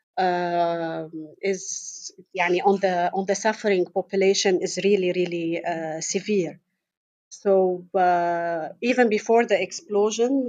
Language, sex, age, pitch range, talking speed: English, female, 40-59, 175-205 Hz, 115 wpm